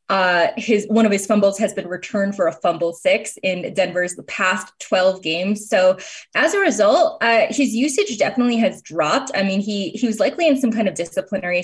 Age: 20-39